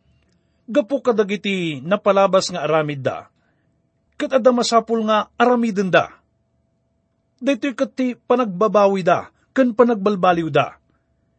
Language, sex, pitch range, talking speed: English, male, 160-225 Hz, 95 wpm